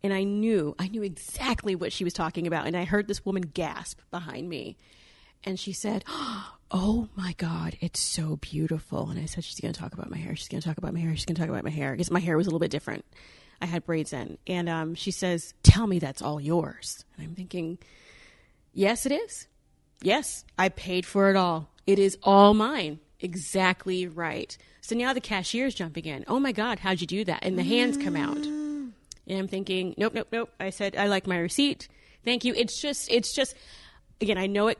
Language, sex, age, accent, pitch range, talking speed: English, female, 30-49, American, 170-215 Hz, 230 wpm